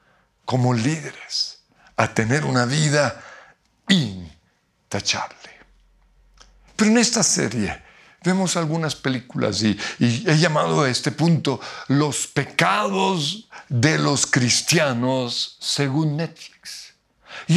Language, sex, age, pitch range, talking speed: Spanish, male, 50-69, 150-195 Hz, 100 wpm